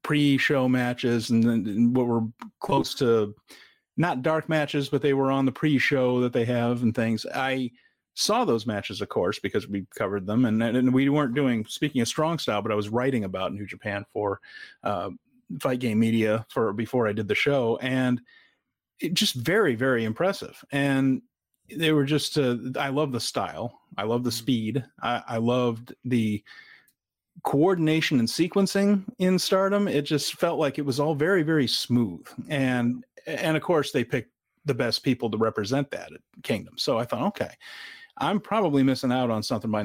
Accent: American